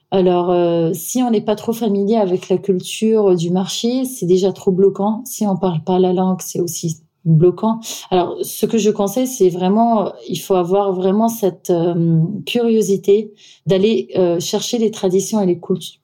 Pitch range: 185-215 Hz